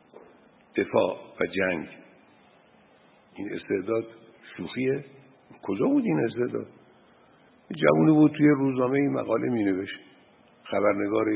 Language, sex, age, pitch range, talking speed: Persian, male, 60-79, 110-150 Hz, 95 wpm